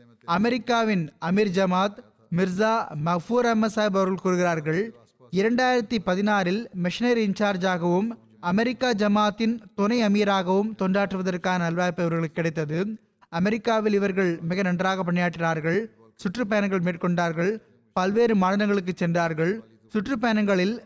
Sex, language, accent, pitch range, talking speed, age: male, Tamil, native, 175-215 Hz, 90 wpm, 20-39